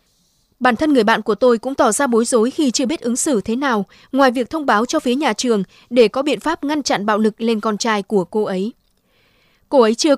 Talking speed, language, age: 255 wpm, Vietnamese, 20-39